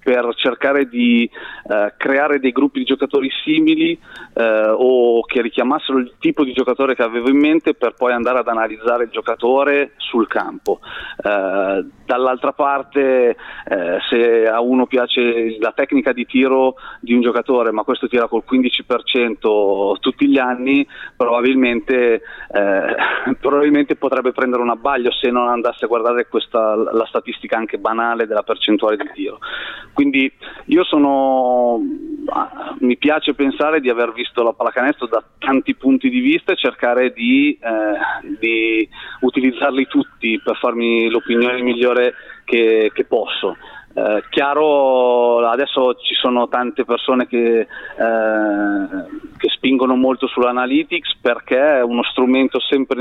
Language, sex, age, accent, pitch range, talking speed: Italian, male, 30-49, native, 120-140 Hz, 140 wpm